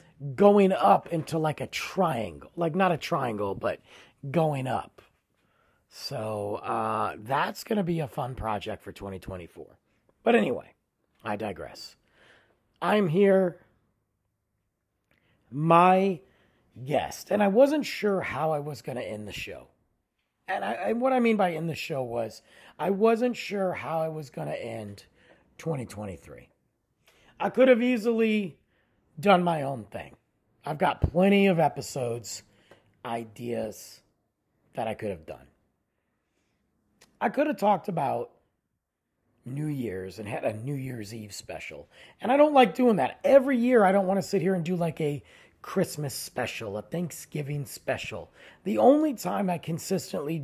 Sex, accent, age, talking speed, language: male, American, 40-59, 150 wpm, English